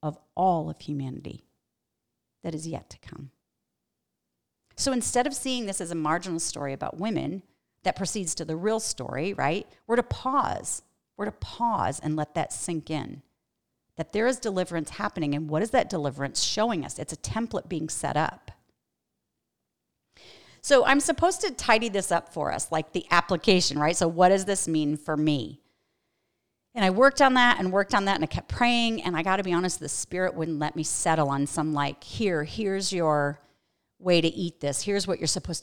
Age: 40-59